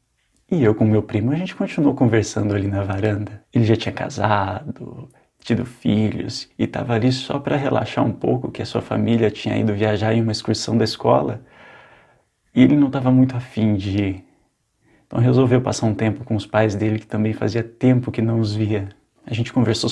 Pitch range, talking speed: 105-125 Hz, 200 wpm